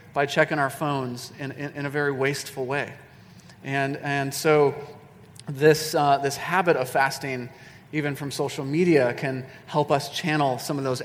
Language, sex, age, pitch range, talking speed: English, male, 30-49, 135-165 Hz, 170 wpm